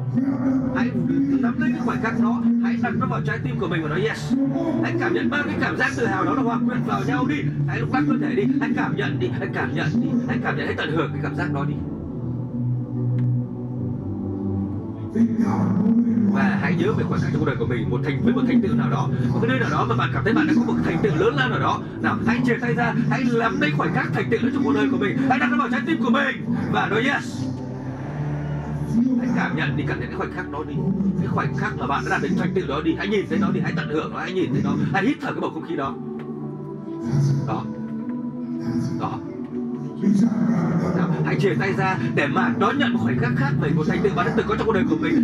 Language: Vietnamese